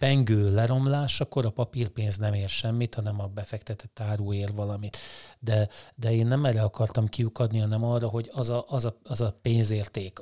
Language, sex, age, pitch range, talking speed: Hungarian, male, 30-49, 110-130 Hz, 180 wpm